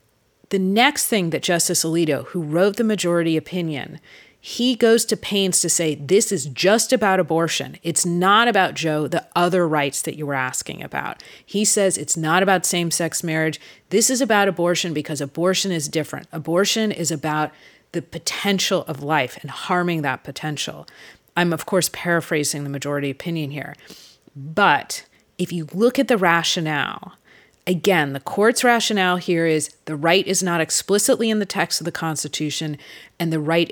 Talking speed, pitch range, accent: 170 wpm, 155-190 Hz, American